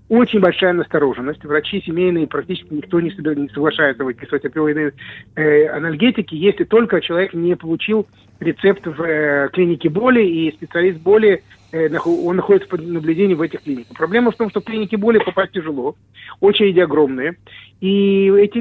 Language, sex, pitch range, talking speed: English, male, 155-200 Hz, 160 wpm